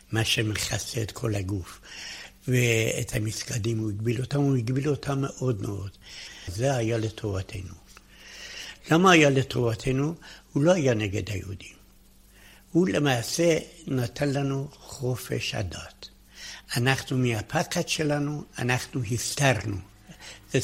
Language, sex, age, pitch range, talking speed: Hebrew, male, 60-79, 105-135 Hz, 110 wpm